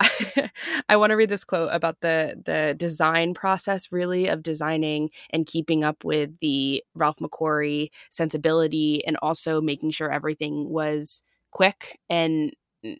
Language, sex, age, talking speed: English, female, 20-39, 140 wpm